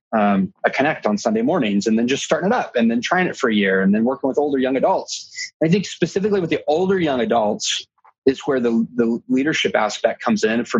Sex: male